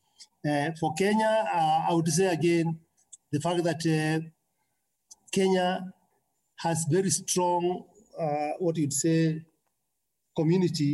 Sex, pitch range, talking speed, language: male, 140-180 Hz, 115 wpm, English